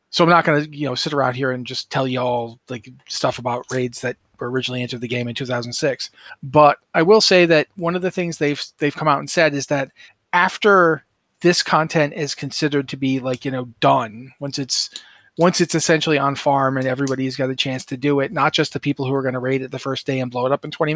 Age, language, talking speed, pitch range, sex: 30-49, English, 255 wpm, 130-160 Hz, male